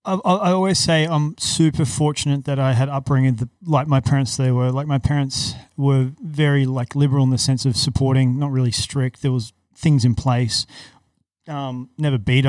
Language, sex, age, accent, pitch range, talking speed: English, male, 30-49, Australian, 125-140 Hz, 185 wpm